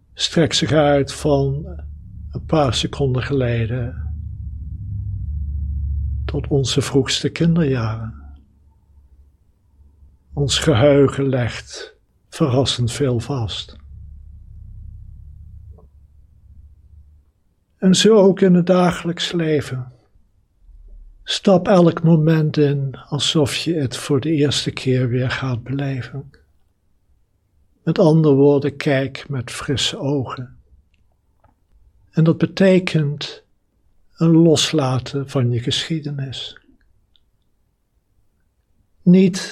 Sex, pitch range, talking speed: male, 95-145 Hz, 85 wpm